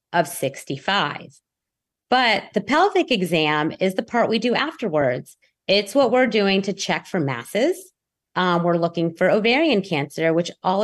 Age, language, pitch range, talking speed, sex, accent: 30-49, English, 170-225 Hz, 155 wpm, female, American